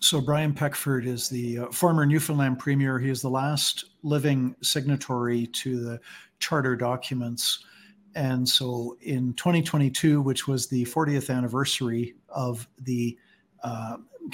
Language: English